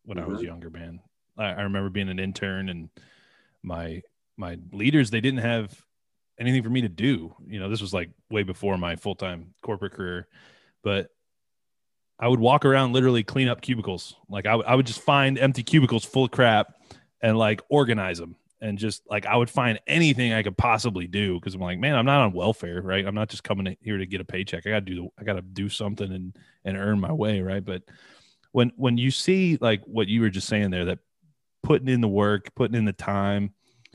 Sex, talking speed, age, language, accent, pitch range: male, 215 wpm, 20-39, English, American, 95-125 Hz